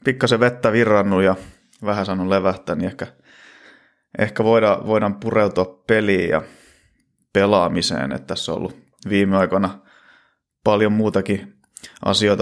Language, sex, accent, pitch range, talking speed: English, male, Finnish, 90-100 Hz, 120 wpm